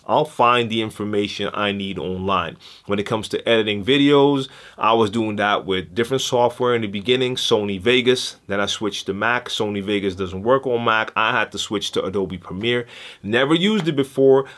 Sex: male